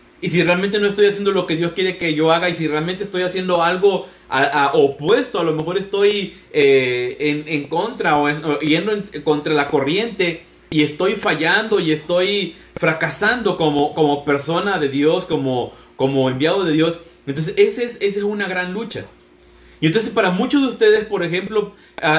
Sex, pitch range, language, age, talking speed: male, 140-185 Hz, Spanish, 30-49, 190 wpm